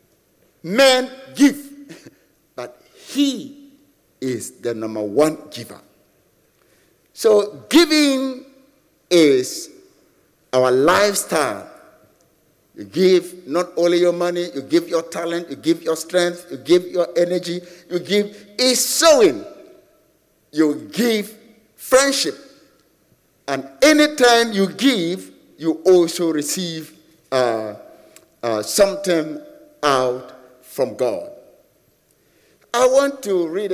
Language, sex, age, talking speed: English, male, 50-69, 100 wpm